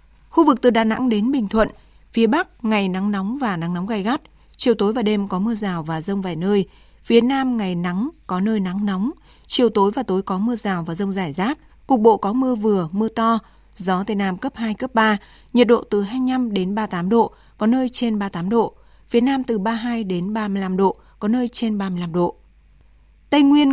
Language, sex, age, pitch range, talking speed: Vietnamese, female, 20-39, 195-235 Hz, 225 wpm